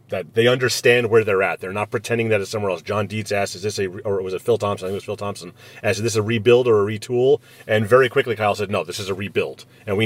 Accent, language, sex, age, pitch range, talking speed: American, English, male, 30-49, 105-130 Hz, 300 wpm